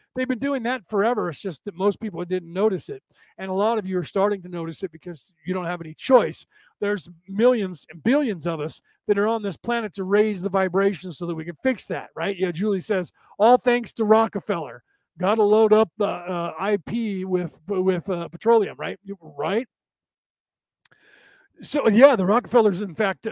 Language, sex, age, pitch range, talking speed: English, male, 40-59, 185-240 Hz, 200 wpm